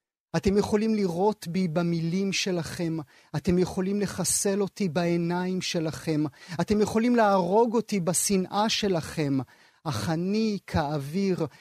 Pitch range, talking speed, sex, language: 150-195 Hz, 110 wpm, male, Hebrew